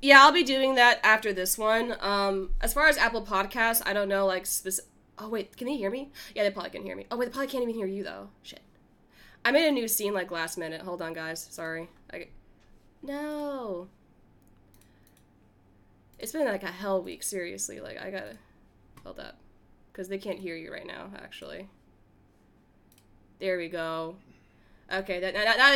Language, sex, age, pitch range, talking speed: English, female, 10-29, 185-265 Hz, 190 wpm